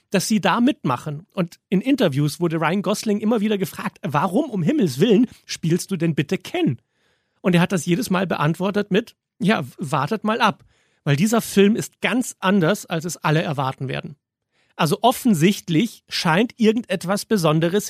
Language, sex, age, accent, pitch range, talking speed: German, male, 40-59, German, 160-210 Hz, 170 wpm